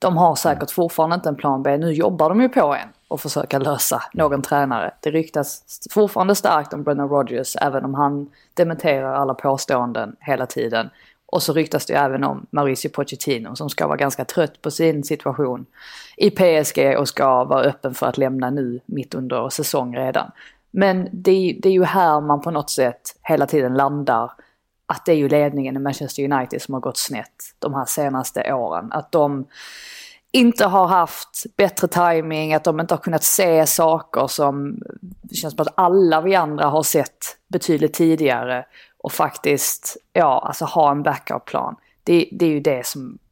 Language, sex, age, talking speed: Swedish, female, 20-39, 180 wpm